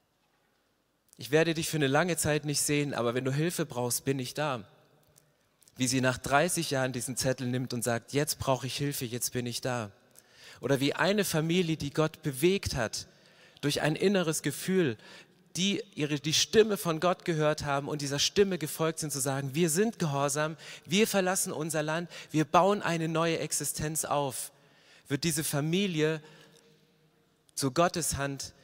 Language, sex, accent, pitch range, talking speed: German, male, German, 140-180 Hz, 170 wpm